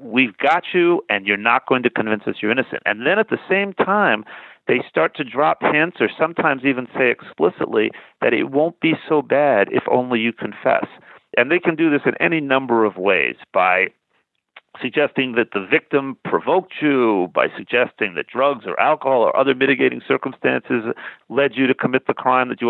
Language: English